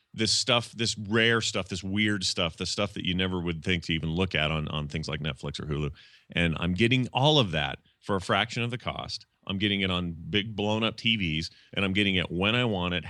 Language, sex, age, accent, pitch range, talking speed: English, male, 30-49, American, 80-105 Hz, 245 wpm